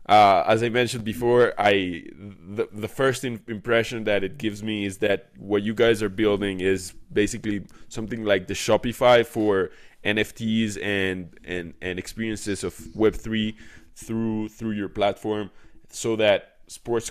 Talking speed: 150 wpm